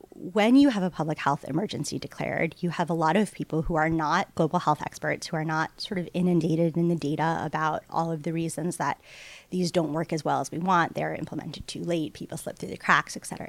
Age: 30-49